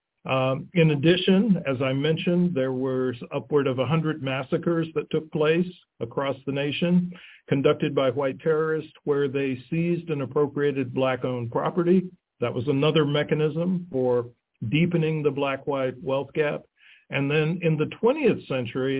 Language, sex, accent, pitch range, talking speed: English, male, American, 130-160 Hz, 140 wpm